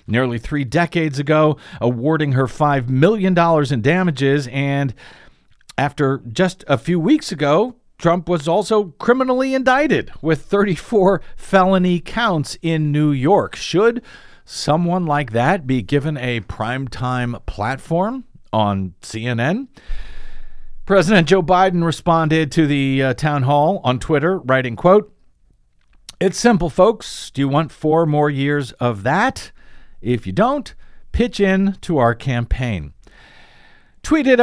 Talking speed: 125 wpm